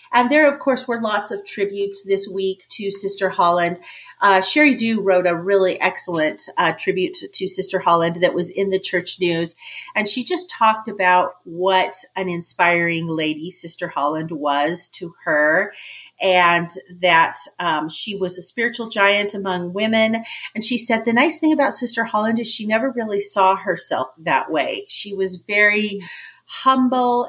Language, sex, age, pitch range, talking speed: English, female, 40-59, 170-220 Hz, 165 wpm